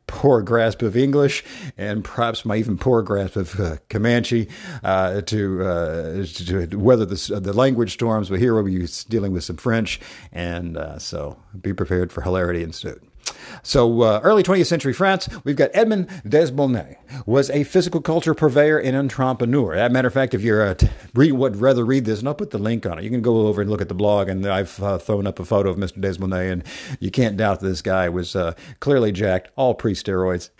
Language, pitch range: English, 100-140 Hz